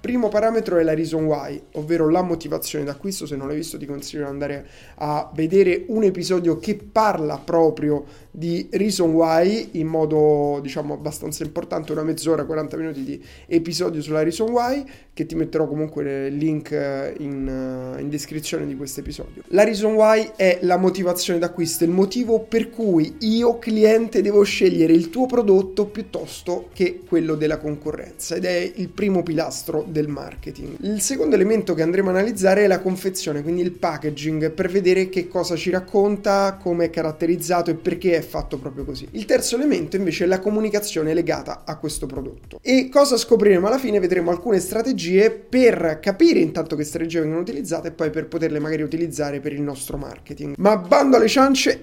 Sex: male